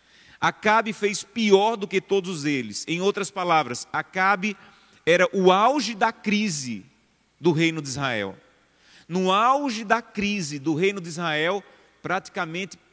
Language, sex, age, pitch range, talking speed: Portuguese, male, 30-49, 145-195 Hz, 135 wpm